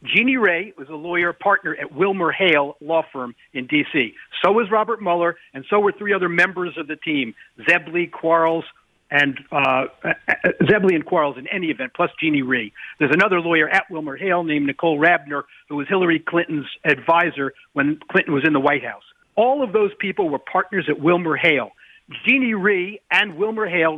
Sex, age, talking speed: male, 50-69, 185 wpm